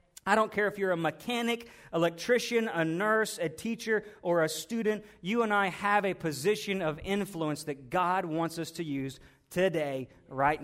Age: 40-59